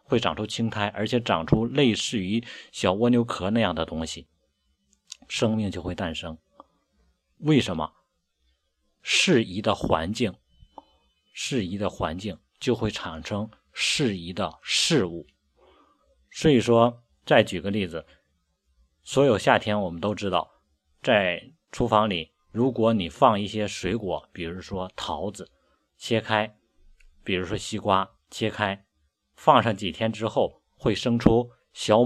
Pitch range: 85-120 Hz